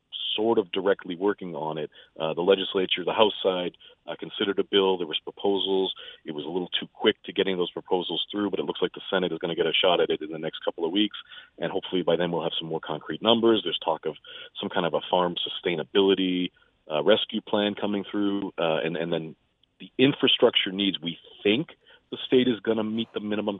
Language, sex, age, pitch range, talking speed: English, male, 40-59, 95-120 Hz, 230 wpm